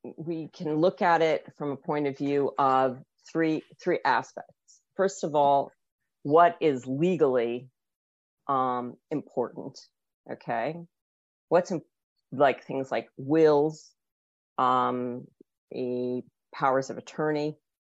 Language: Hebrew